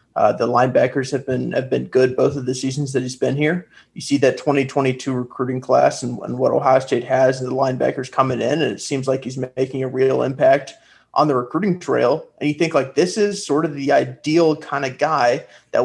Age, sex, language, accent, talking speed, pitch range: 30-49, male, English, American, 225 wpm, 130-170 Hz